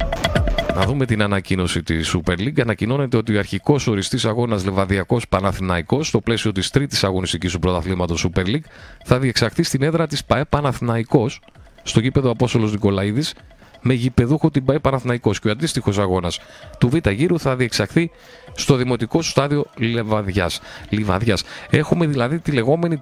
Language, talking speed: Greek, 155 wpm